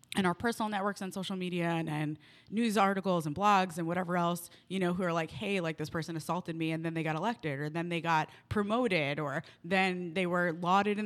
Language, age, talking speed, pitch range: English, 20-39, 235 wpm, 165-195 Hz